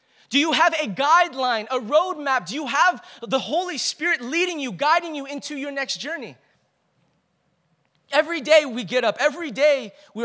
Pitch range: 220-280 Hz